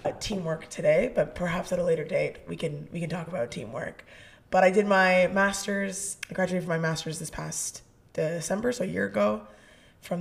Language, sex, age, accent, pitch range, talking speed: English, female, 20-39, American, 160-185 Hz, 195 wpm